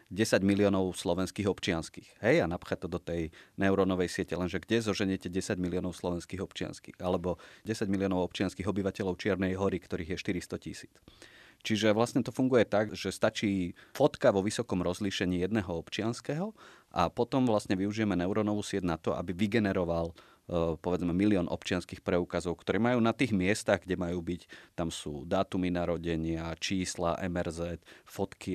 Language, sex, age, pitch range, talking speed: Slovak, male, 30-49, 90-100 Hz, 150 wpm